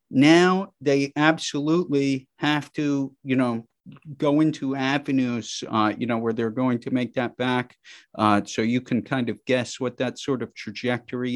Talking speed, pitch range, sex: 170 wpm, 125-150 Hz, male